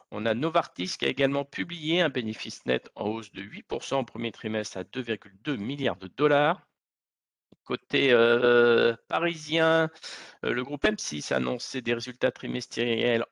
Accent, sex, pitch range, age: French, male, 115-150 Hz, 50-69